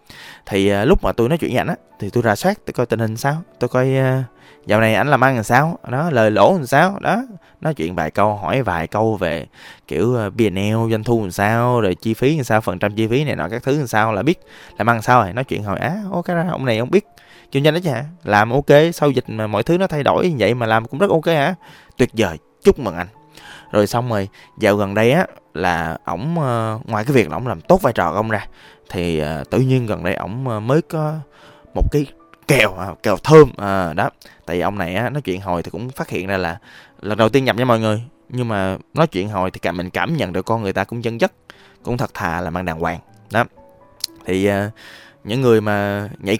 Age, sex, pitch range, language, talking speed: 20-39, male, 100-135 Hz, Vietnamese, 250 wpm